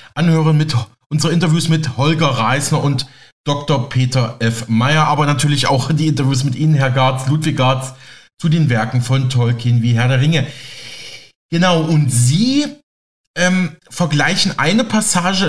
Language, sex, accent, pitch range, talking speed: German, male, German, 135-165 Hz, 150 wpm